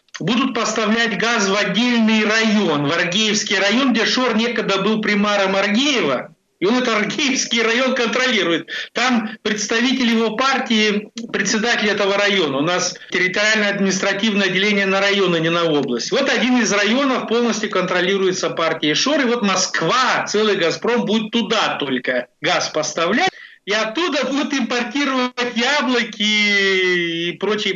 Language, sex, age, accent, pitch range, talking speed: Russian, male, 50-69, native, 190-235 Hz, 135 wpm